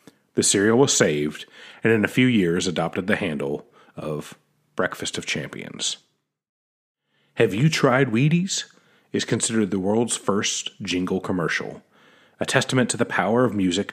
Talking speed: 145 wpm